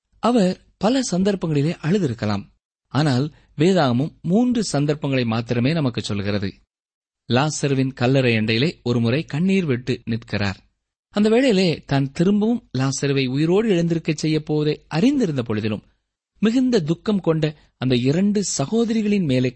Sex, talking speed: male, 105 wpm